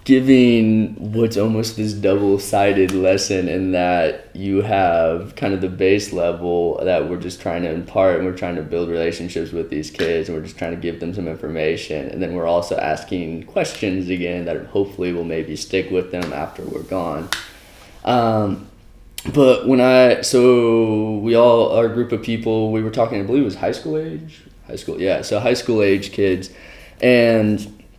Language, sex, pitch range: English, male, 90-110 Hz